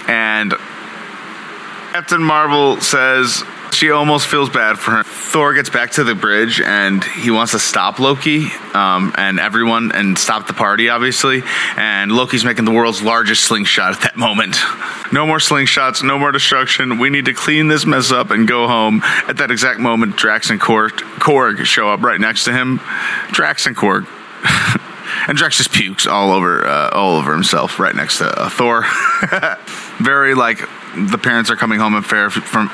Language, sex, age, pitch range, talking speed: English, male, 30-49, 110-135 Hz, 180 wpm